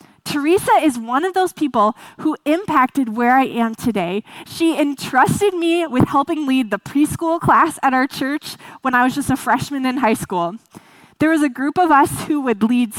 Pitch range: 235-320 Hz